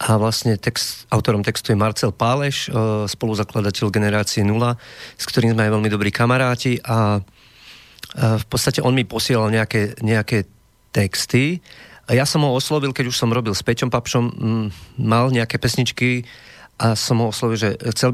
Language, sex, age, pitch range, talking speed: Slovak, male, 30-49, 110-130 Hz, 160 wpm